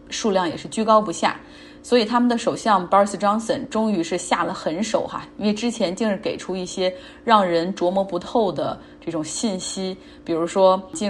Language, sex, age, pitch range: Chinese, female, 20-39, 180-235 Hz